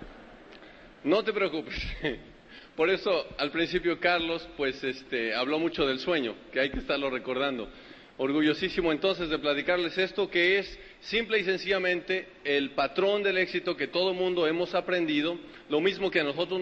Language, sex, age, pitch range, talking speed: Spanish, male, 40-59, 155-190 Hz, 155 wpm